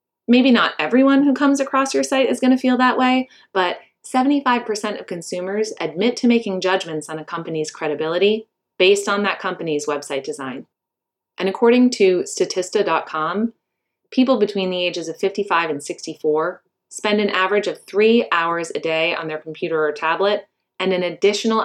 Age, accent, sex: 20-39, American, female